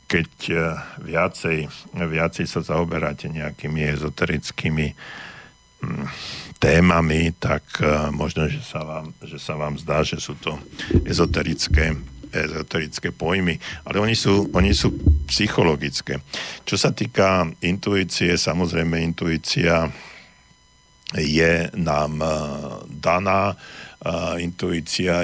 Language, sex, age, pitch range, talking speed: Slovak, male, 50-69, 75-90 Hz, 95 wpm